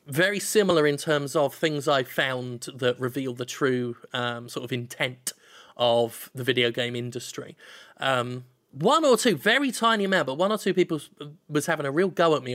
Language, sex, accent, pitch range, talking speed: English, male, British, 130-175 Hz, 190 wpm